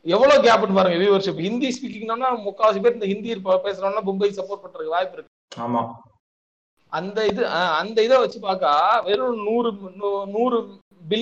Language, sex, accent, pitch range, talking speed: Tamil, male, native, 175-235 Hz, 165 wpm